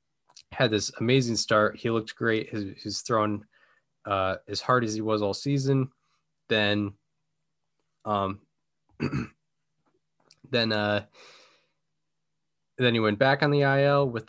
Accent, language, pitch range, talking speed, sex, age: American, English, 105-125 Hz, 125 wpm, male, 10-29